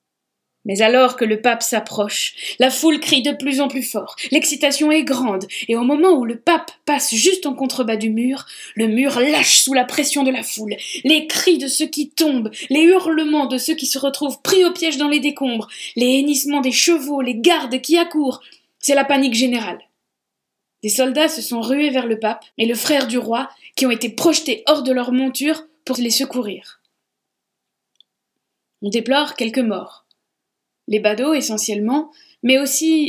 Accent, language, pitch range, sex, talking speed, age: French, French, 215-290 Hz, female, 185 wpm, 20-39